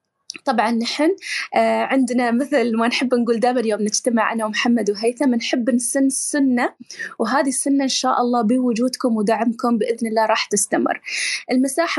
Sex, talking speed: female, 135 wpm